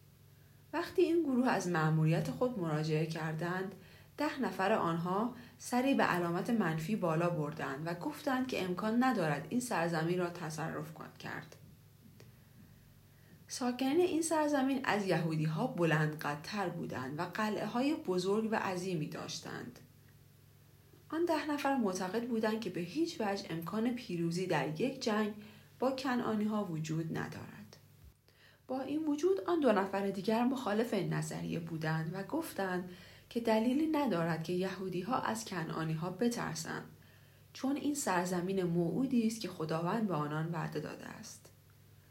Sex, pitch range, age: female, 160-240 Hz, 40-59